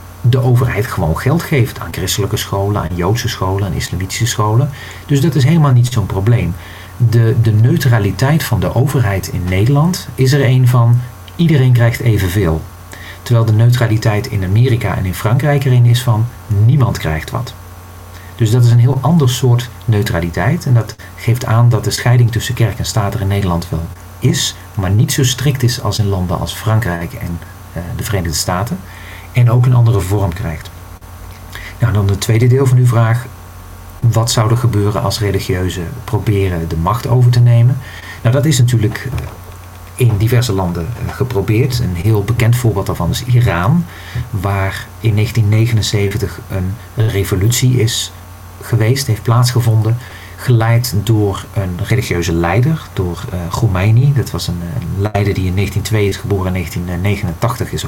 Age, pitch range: 40-59, 95-120 Hz